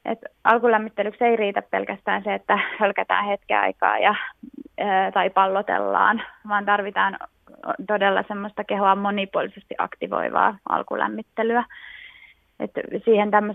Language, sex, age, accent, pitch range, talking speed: Finnish, female, 20-39, native, 195-225 Hz, 95 wpm